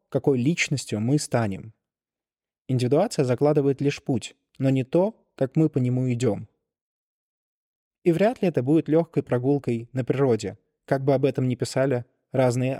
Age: 20-39